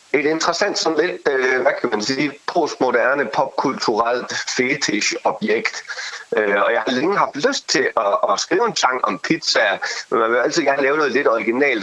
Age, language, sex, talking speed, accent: 30-49, Danish, male, 180 wpm, native